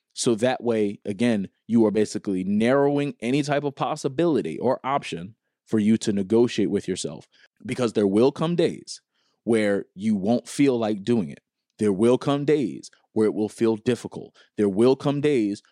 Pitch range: 105-135 Hz